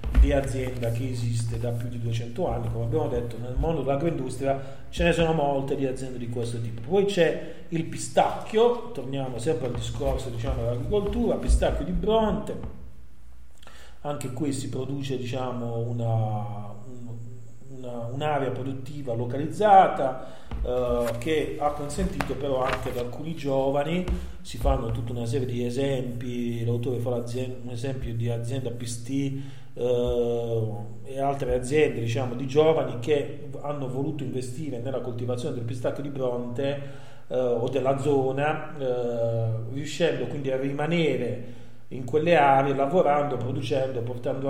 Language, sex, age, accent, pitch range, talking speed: Italian, male, 40-59, native, 120-140 Hz, 140 wpm